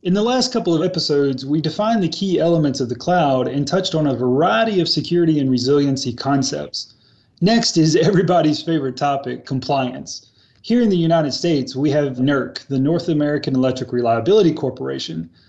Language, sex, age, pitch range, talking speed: English, male, 30-49, 130-170 Hz, 170 wpm